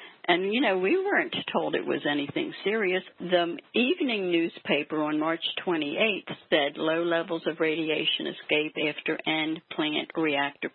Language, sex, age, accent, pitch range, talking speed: English, female, 60-79, American, 160-195 Hz, 145 wpm